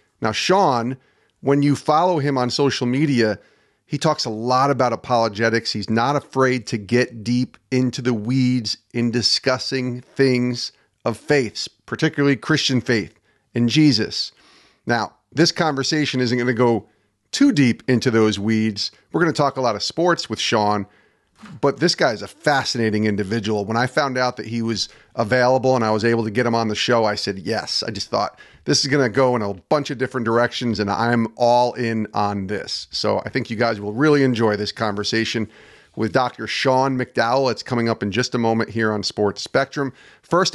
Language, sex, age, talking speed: English, male, 40-59, 190 wpm